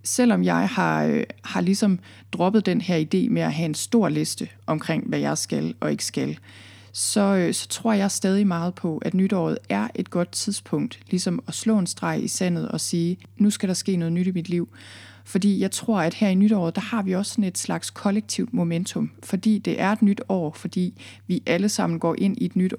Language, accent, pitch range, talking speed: Danish, native, 160-205 Hz, 220 wpm